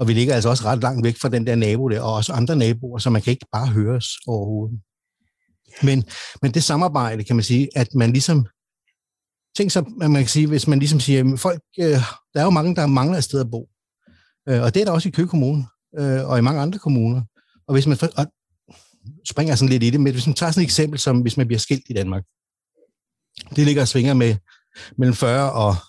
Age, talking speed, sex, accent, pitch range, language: 60-79, 230 wpm, male, native, 115-150 Hz, Danish